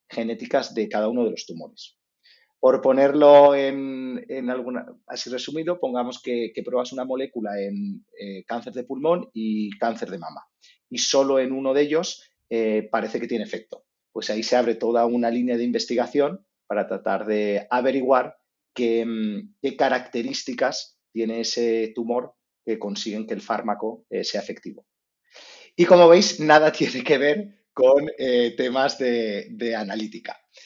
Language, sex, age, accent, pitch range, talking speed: Spanish, male, 30-49, Spanish, 115-145 Hz, 155 wpm